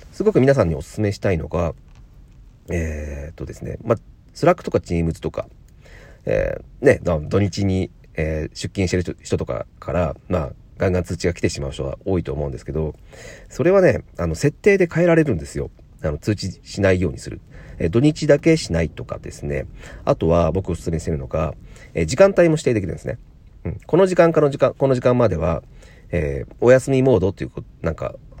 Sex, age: male, 40-59